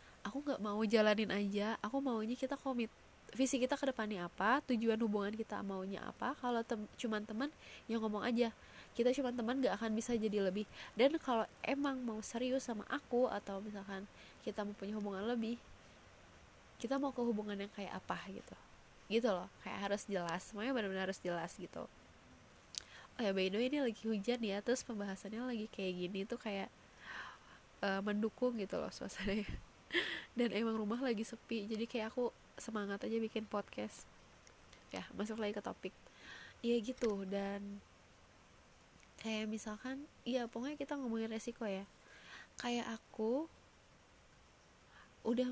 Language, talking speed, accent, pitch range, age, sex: Indonesian, 155 wpm, native, 205-245 Hz, 20-39, female